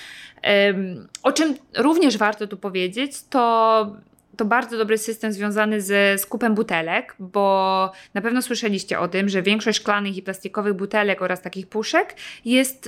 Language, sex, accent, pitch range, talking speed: English, female, Polish, 190-225 Hz, 145 wpm